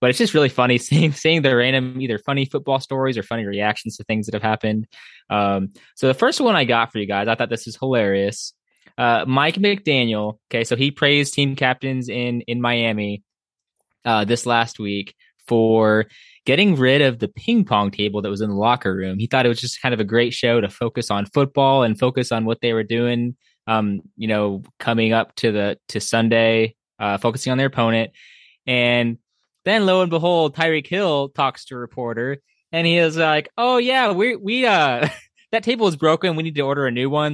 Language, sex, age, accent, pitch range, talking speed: English, male, 20-39, American, 115-145 Hz, 210 wpm